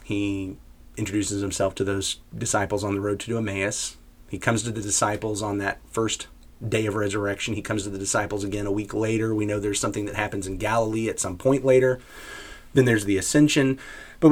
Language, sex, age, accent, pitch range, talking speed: English, male, 30-49, American, 100-125 Hz, 200 wpm